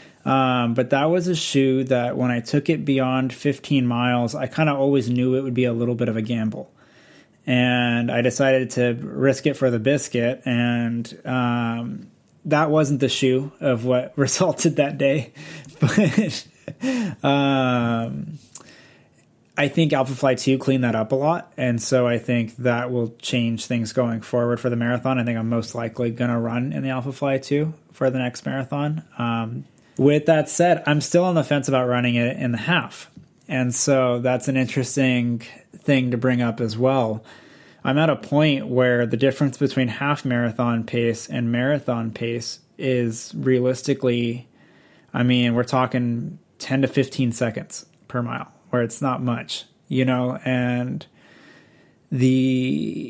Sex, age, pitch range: male, 20-39, 120-140 Hz